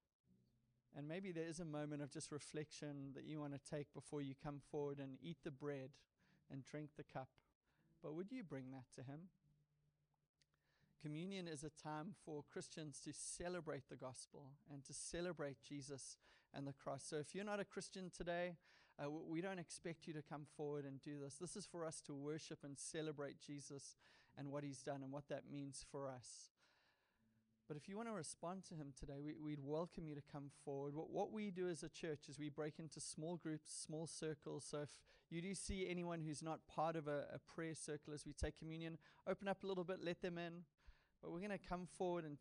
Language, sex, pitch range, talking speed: English, male, 140-165 Hz, 210 wpm